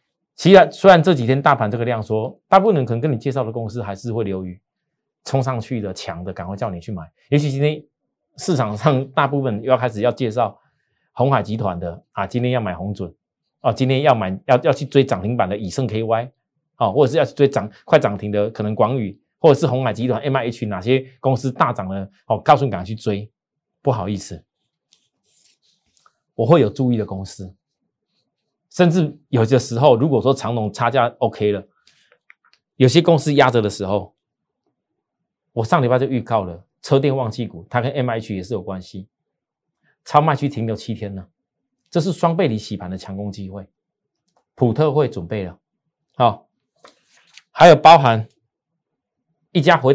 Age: 30-49